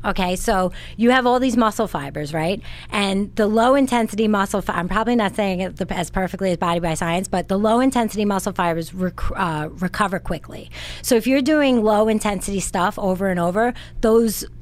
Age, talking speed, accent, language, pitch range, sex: 30-49, 195 wpm, American, English, 180-220 Hz, female